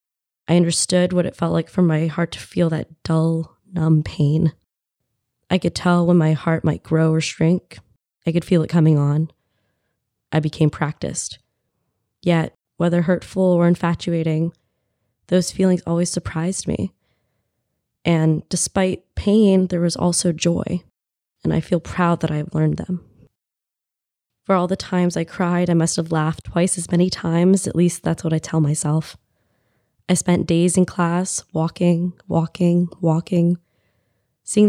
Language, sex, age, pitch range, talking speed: English, female, 20-39, 155-175 Hz, 155 wpm